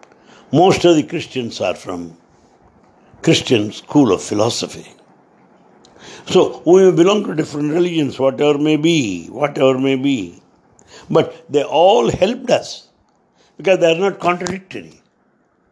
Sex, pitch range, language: male, 130-175 Hz, English